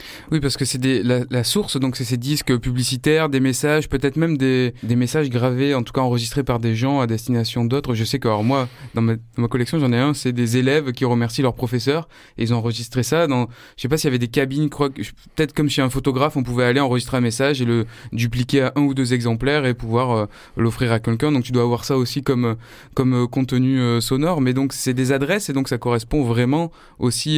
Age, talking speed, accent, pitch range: 20-39, 250 wpm, French, 115-140 Hz